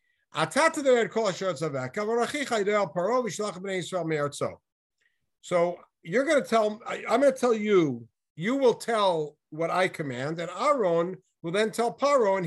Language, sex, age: English, male, 60-79